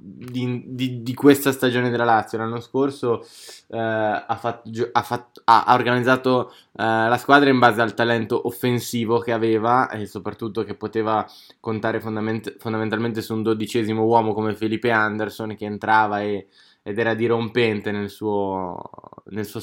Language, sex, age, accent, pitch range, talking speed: Italian, male, 20-39, native, 110-125 Hz, 130 wpm